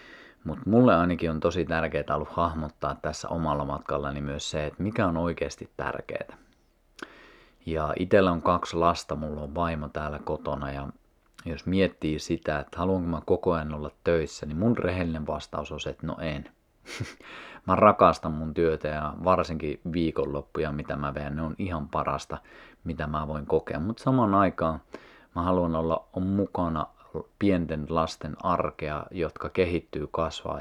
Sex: male